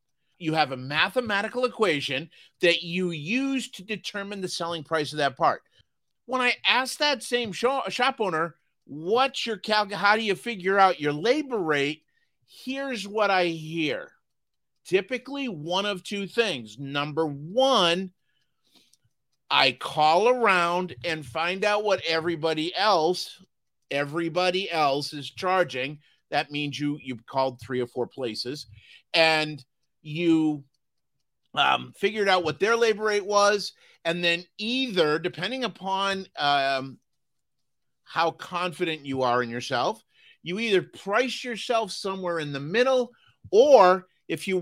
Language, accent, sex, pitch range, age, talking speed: English, American, male, 155-210 Hz, 50-69, 135 wpm